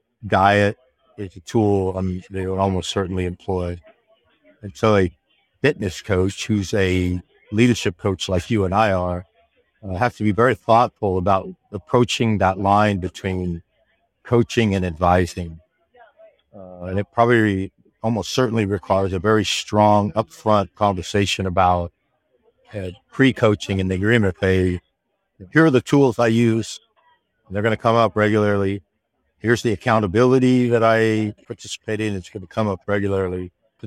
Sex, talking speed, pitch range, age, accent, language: male, 150 wpm, 90-115 Hz, 50-69, American, English